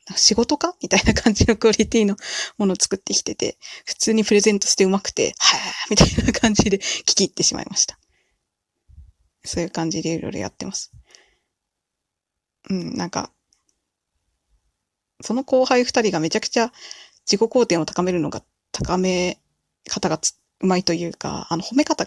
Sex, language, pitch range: female, Japanese, 175-255 Hz